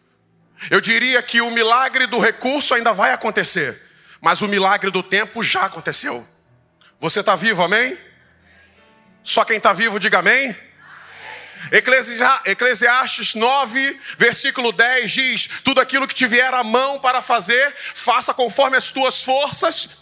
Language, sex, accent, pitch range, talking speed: Portuguese, male, Brazilian, 210-275 Hz, 135 wpm